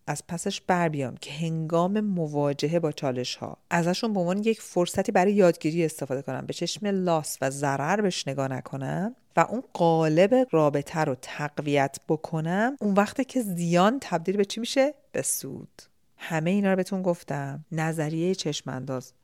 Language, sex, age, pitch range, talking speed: Persian, female, 40-59, 140-185 Hz, 160 wpm